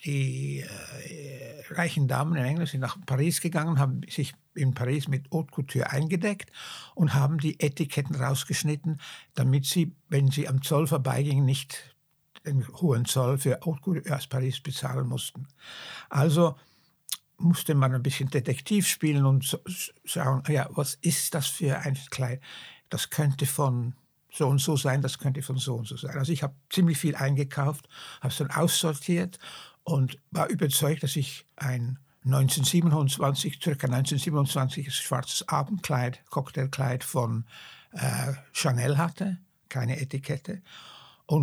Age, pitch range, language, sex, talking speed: 60-79, 135-160 Hz, German, male, 145 wpm